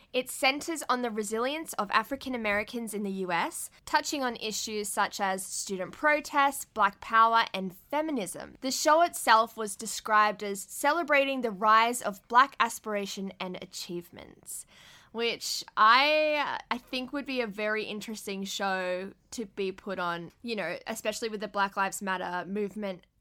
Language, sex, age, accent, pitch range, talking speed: English, female, 10-29, Australian, 200-250 Hz, 150 wpm